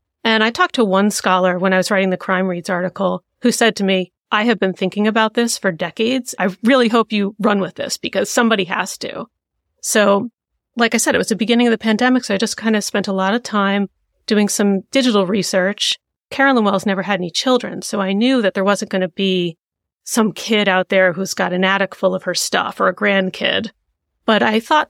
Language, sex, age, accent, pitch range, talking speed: English, female, 30-49, American, 190-230 Hz, 230 wpm